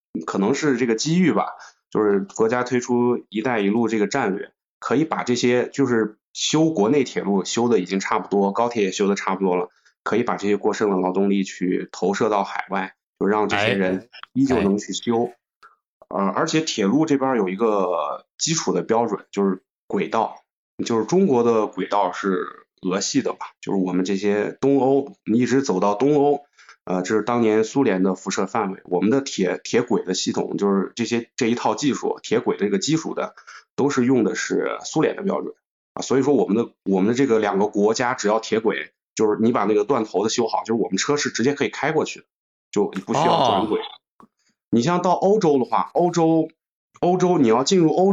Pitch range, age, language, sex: 100-140 Hz, 20-39, Chinese, male